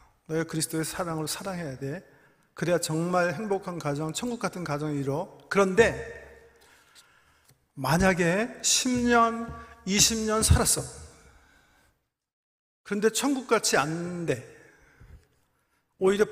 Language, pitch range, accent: Korean, 150-210 Hz, native